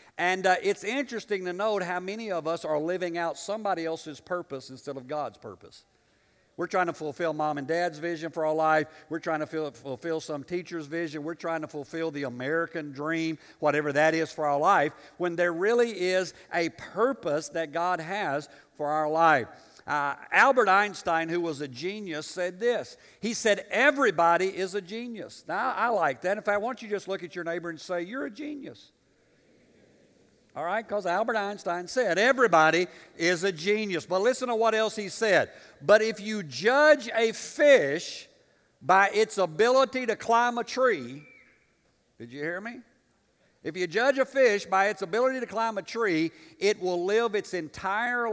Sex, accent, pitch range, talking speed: male, American, 165-225 Hz, 185 wpm